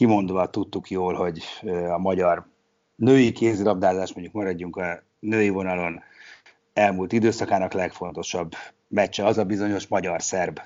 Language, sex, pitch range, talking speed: Hungarian, male, 90-110 Hz, 120 wpm